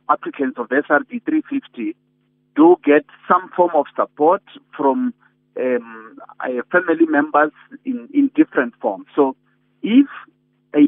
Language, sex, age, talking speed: English, male, 50-69, 115 wpm